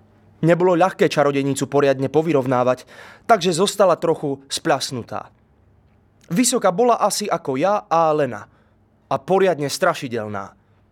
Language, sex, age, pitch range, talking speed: Slovak, male, 20-39, 125-205 Hz, 105 wpm